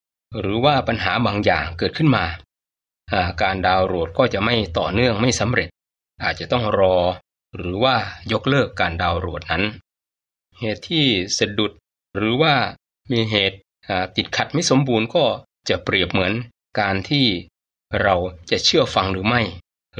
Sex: male